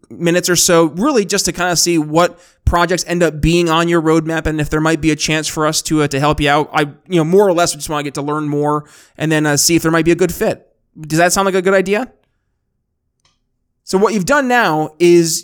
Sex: male